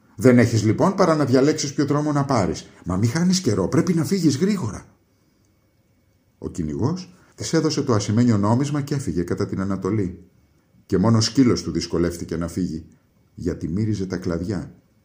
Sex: male